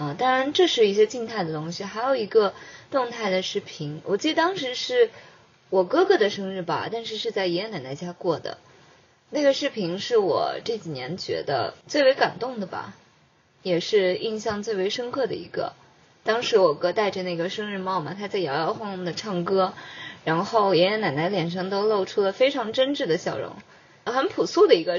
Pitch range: 175-260 Hz